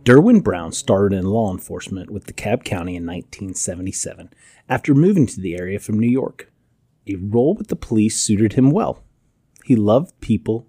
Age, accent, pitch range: 30-49, American, 95-130 Hz